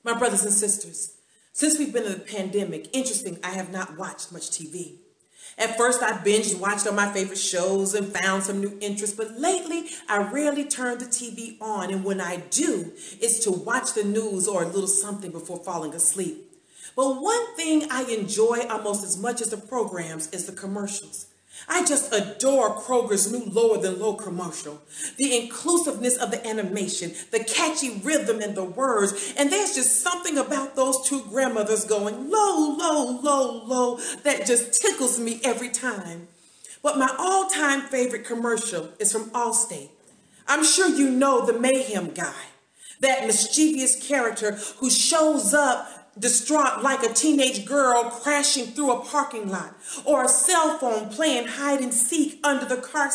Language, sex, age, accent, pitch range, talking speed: English, female, 40-59, American, 205-280 Hz, 165 wpm